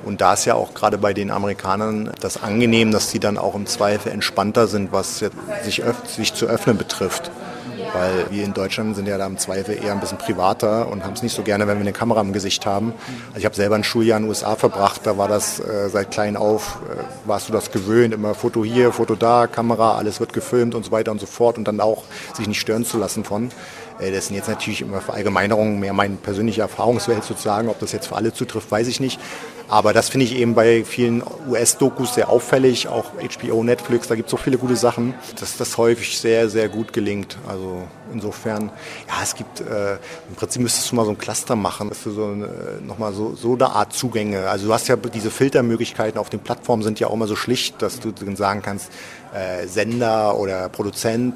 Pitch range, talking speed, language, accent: 100-115 Hz, 225 wpm, German, German